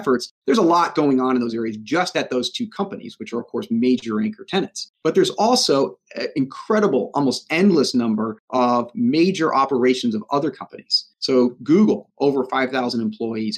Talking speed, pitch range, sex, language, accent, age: 170 wpm, 120-155 Hz, male, English, American, 30-49